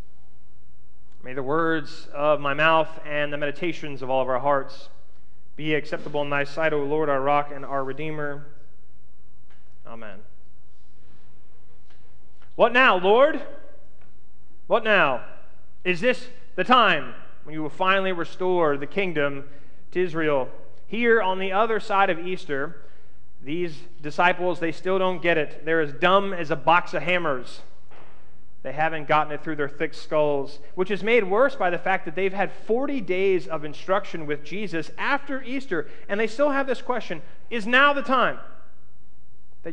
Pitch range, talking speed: 140-190 Hz, 155 wpm